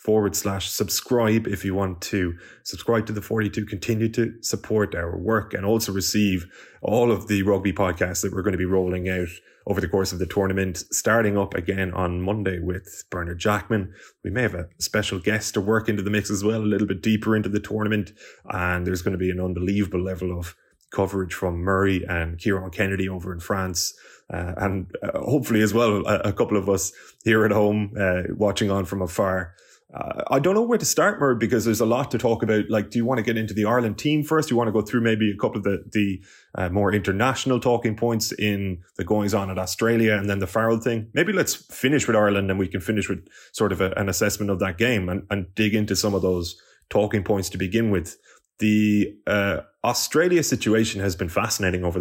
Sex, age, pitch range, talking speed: male, 20-39, 95-110 Hz, 225 wpm